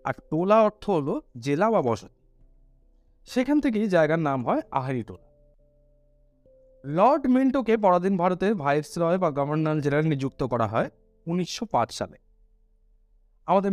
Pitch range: 125-205 Hz